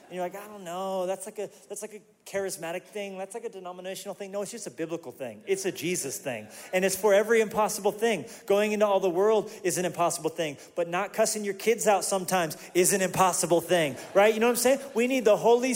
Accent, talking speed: American, 250 wpm